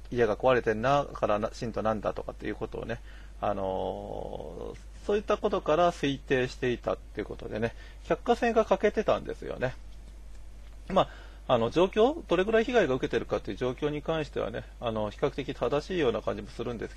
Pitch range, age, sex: 110-185 Hz, 40-59, male